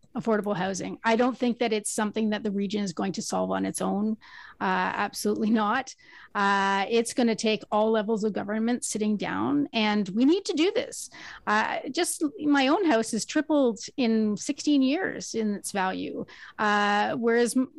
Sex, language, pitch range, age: female, English, 210-275 Hz, 30-49